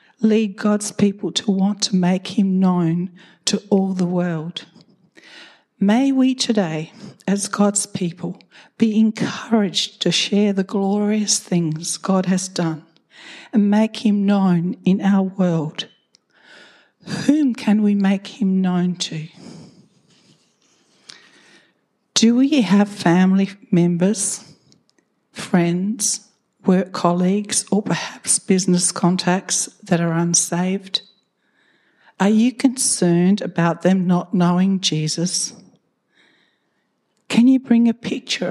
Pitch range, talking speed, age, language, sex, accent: 175-210 Hz, 110 wpm, 60-79, English, female, Australian